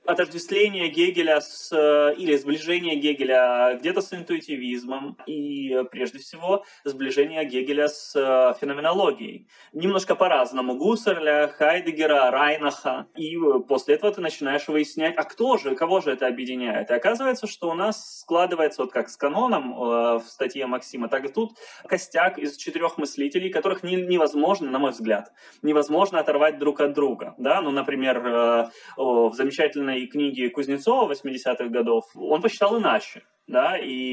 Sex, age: male, 20-39